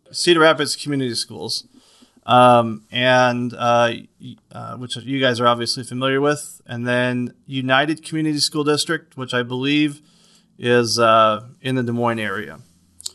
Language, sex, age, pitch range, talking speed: English, male, 30-49, 115-135 Hz, 140 wpm